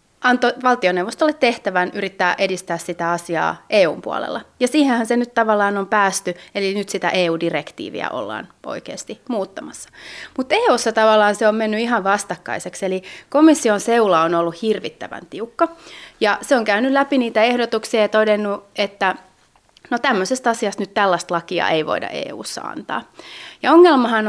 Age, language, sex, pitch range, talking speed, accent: 30-49, Finnish, female, 175-230 Hz, 150 wpm, native